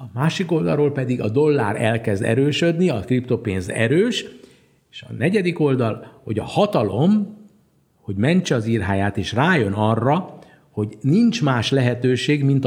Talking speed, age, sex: 135 wpm, 60-79, male